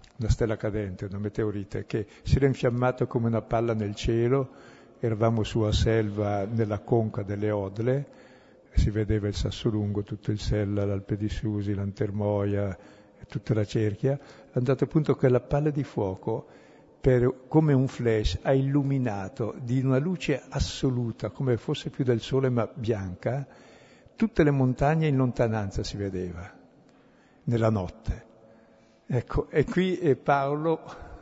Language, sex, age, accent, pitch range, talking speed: Italian, male, 60-79, native, 105-135 Hz, 140 wpm